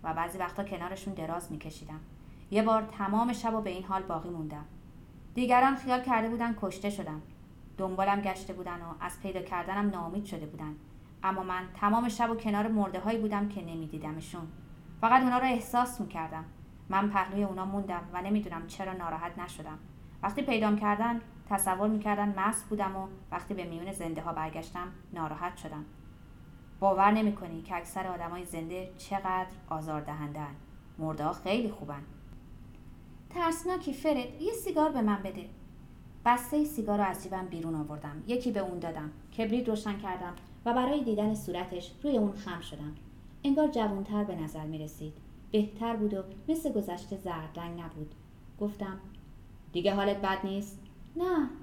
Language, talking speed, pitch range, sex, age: Persian, 150 wpm, 165-220 Hz, female, 30-49